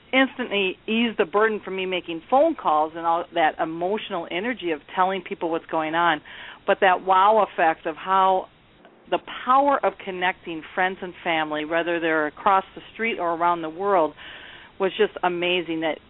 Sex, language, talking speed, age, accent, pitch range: female, English, 170 wpm, 50-69, American, 165-200 Hz